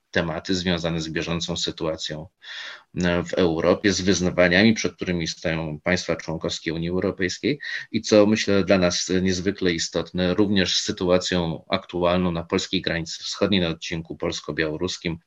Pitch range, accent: 80-95 Hz, native